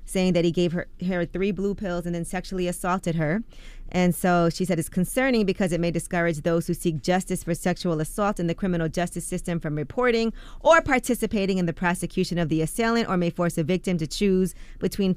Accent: American